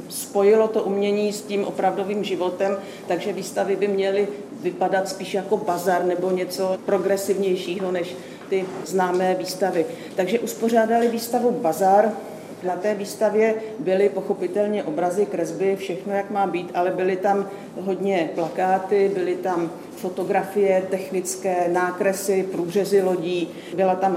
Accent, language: native, Czech